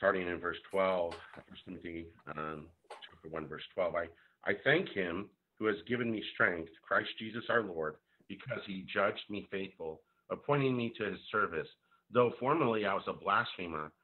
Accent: American